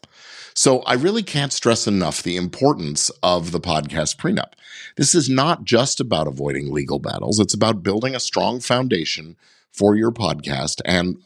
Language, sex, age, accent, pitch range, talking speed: English, male, 50-69, American, 75-125 Hz, 160 wpm